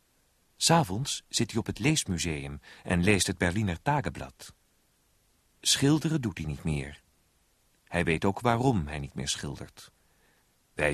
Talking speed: 135 wpm